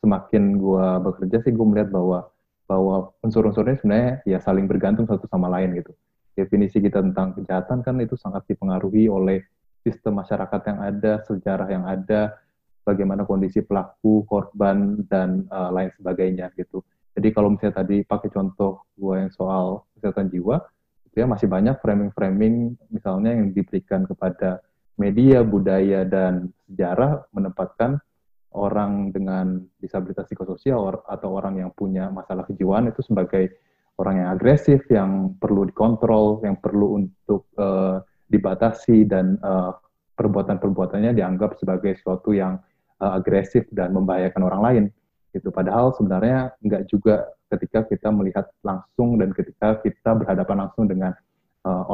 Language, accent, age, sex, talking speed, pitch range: Indonesian, native, 20-39, male, 140 wpm, 95-110 Hz